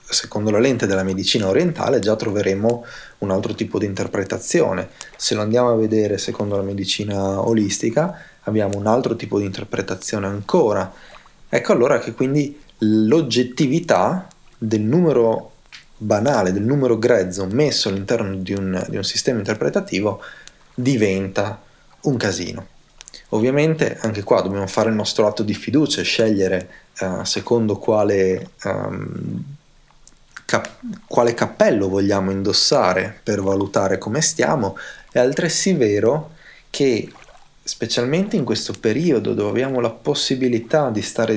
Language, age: Italian, 30-49